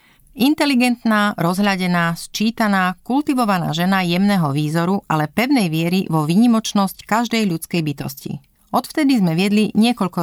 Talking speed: 110 wpm